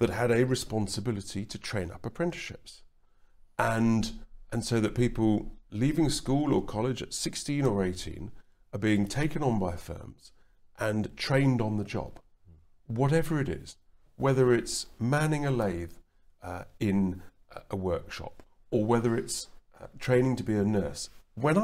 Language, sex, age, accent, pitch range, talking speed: English, male, 40-59, British, 95-130 Hz, 155 wpm